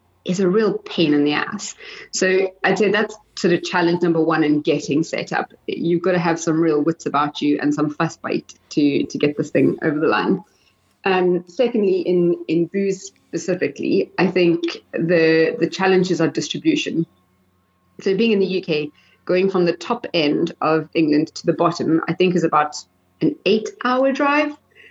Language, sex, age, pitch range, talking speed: English, female, 30-49, 155-190 Hz, 185 wpm